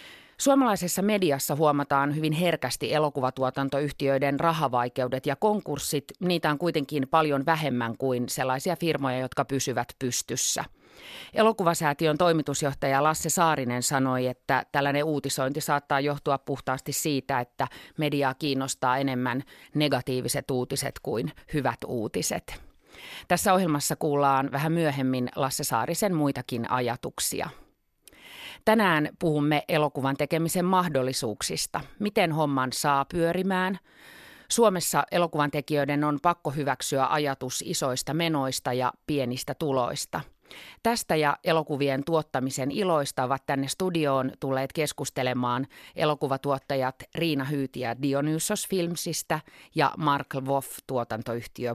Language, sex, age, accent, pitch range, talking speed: Finnish, female, 30-49, native, 135-165 Hz, 105 wpm